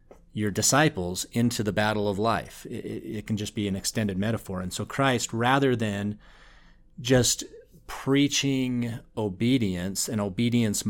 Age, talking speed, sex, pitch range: 40-59, 140 wpm, male, 100-120 Hz